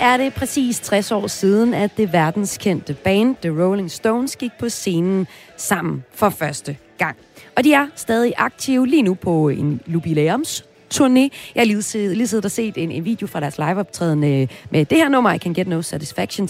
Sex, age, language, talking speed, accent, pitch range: female, 30-49, Danish, 180 wpm, native, 165-230 Hz